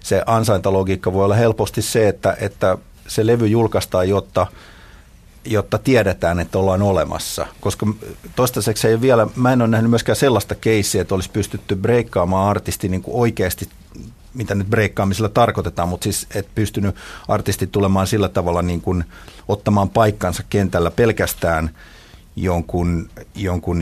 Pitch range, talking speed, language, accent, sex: 90-110 Hz, 140 wpm, Finnish, native, male